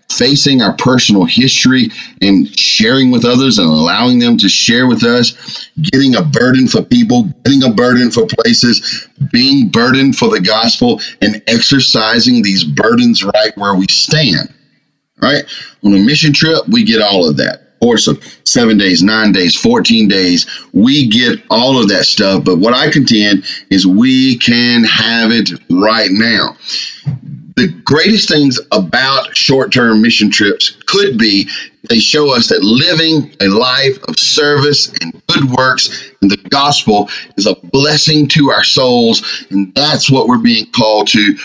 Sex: male